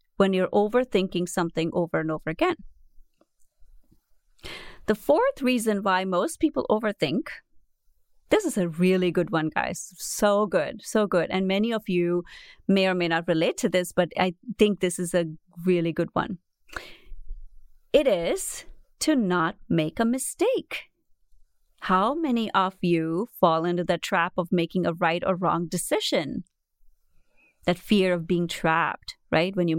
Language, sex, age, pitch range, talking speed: English, female, 30-49, 170-205 Hz, 155 wpm